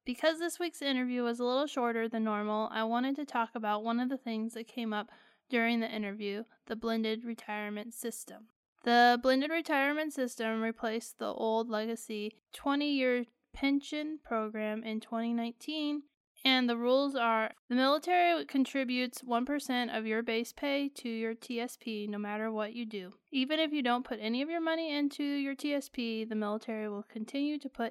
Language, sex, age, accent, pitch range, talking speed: English, female, 20-39, American, 220-265 Hz, 170 wpm